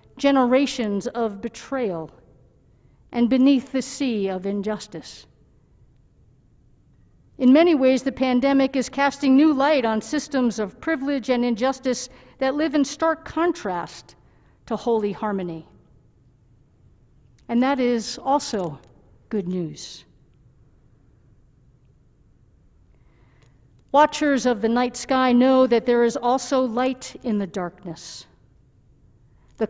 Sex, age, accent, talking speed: female, 60-79, American, 105 wpm